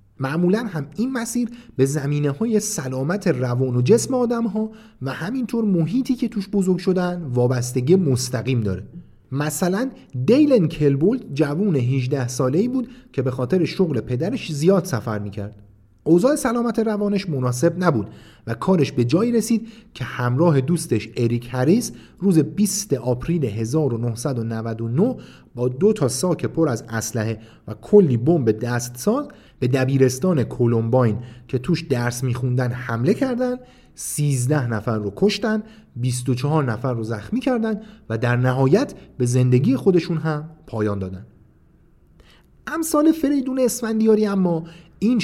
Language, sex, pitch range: Persian, male, 125-200 Hz